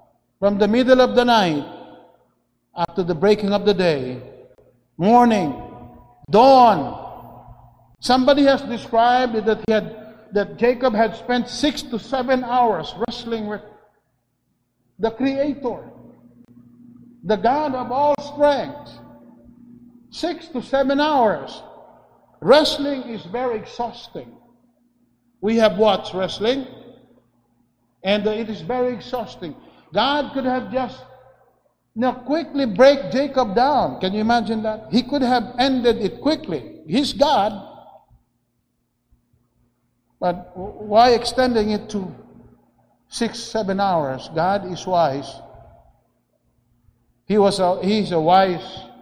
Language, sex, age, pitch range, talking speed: English, male, 50-69, 170-245 Hz, 115 wpm